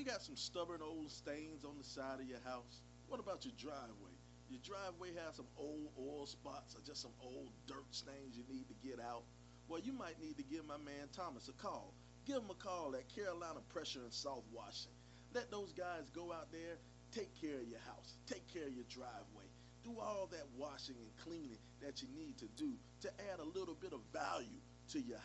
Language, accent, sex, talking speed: English, American, male, 215 wpm